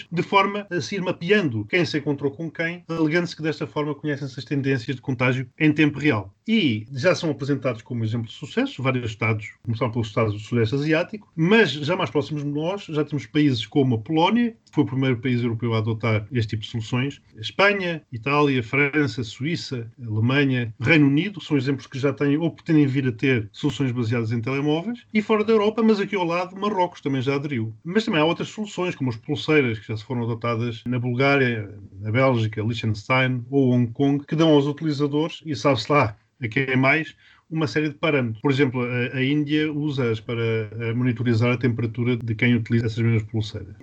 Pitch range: 120-155 Hz